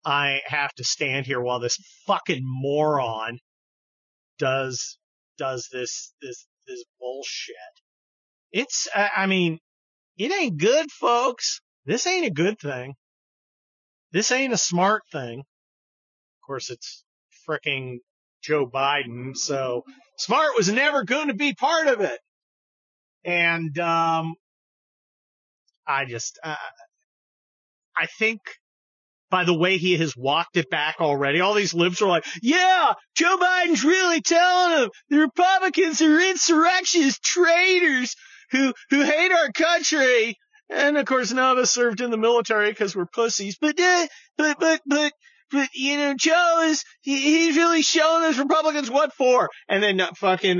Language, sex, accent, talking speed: English, male, American, 140 wpm